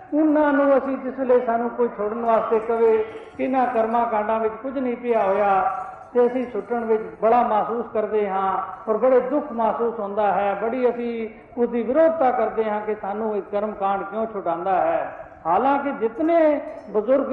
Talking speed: 140 wpm